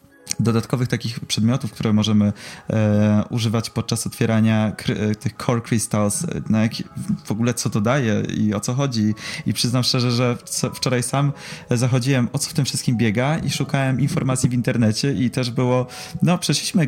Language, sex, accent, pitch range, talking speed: Polish, male, native, 115-145 Hz, 180 wpm